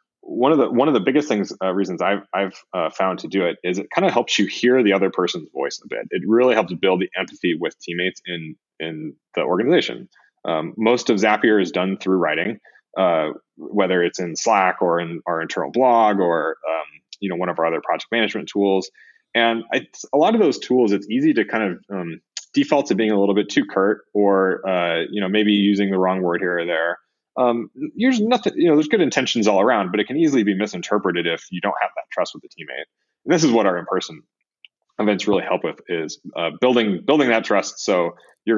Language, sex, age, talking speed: English, male, 20-39, 225 wpm